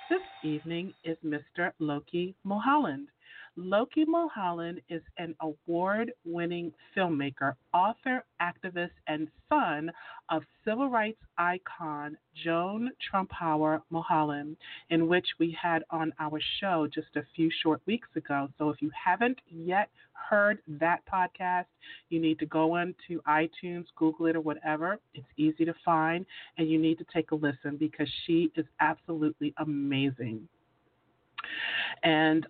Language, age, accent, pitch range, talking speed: English, 40-59, American, 155-195 Hz, 130 wpm